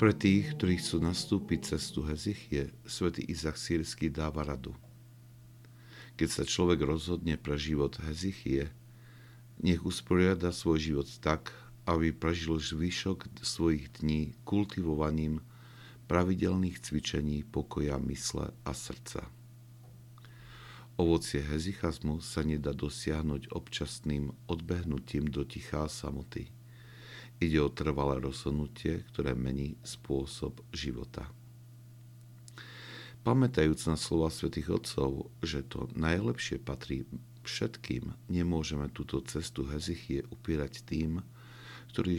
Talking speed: 100 wpm